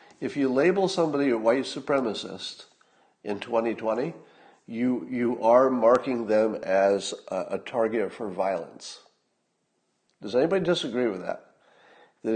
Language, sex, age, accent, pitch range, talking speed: English, male, 50-69, American, 110-170 Hz, 125 wpm